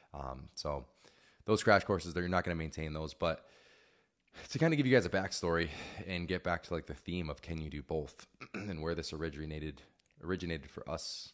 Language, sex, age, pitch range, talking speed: English, male, 20-39, 75-90 Hz, 210 wpm